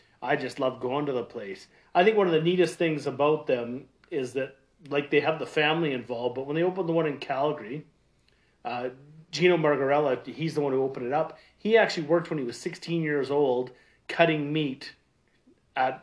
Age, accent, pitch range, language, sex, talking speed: 30-49, American, 130-165 Hz, English, male, 200 wpm